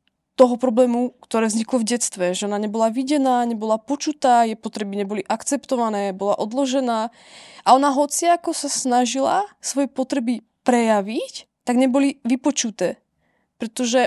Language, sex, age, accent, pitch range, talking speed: Czech, female, 20-39, native, 225-270 Hz, 130 wpm